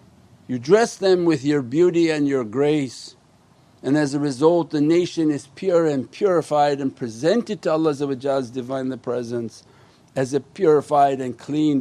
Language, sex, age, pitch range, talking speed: English, male, 50-69, 130-175 Hz, 150 wpm